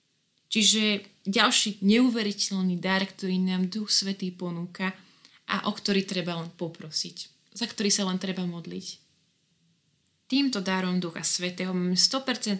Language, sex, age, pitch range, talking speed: Slovak, female, 20-39, 175-205 Hz, 125 wpm